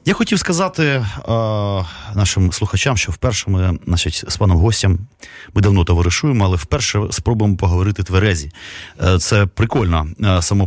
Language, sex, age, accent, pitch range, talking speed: Ukrainian, male, 30-49, native, 95-120 Hz, 135 wpm